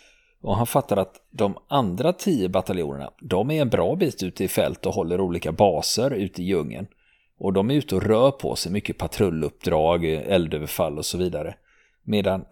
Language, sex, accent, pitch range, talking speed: Swedish, male, native, 90-115 Hz, 180 wpm